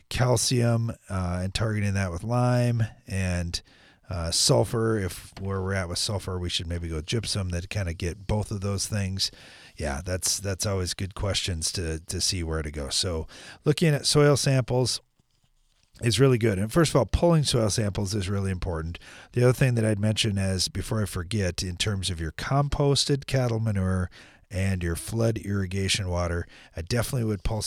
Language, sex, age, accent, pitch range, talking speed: English, male, 40-59, American, 85-115 Hz, 185 wpm